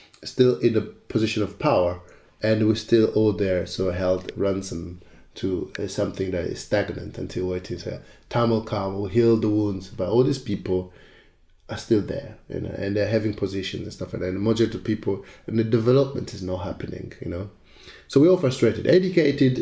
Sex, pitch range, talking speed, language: male, 95-120 Hz, 195 wpm, English